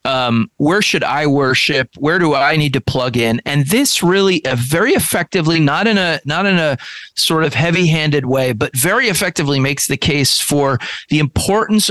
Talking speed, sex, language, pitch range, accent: 190 wpm, male, English, 140-175 Hz, American